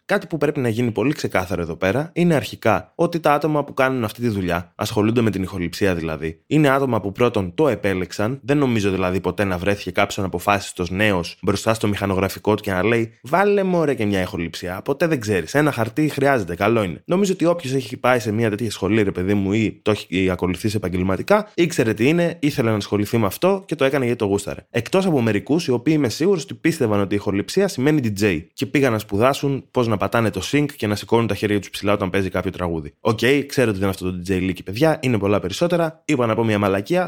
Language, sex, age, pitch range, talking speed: Greek, male, 20-39, 100-140 Hz, 220 wpm